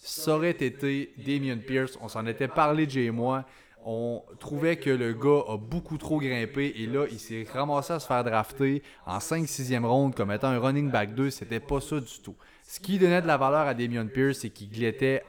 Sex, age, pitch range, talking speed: male, 20-39, 115-140 Hz, 220 wpm